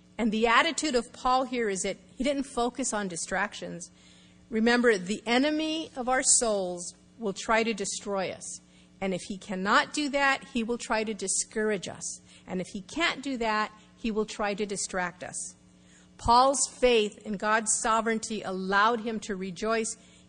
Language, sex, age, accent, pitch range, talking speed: English, female, 50-69, American, 190-245 Hz, 170 wpm